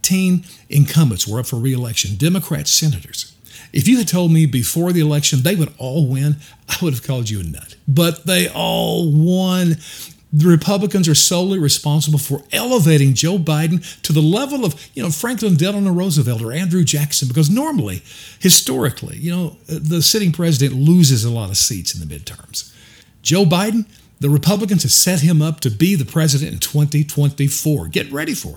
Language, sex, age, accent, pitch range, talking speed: English, male, 50-69, American, 135-175 Hz, 180 wpm